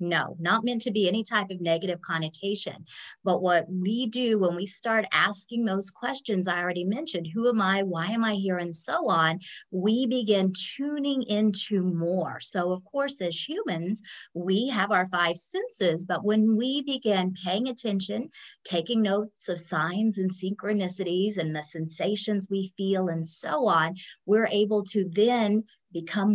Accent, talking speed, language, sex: American, 165 wpm, English, female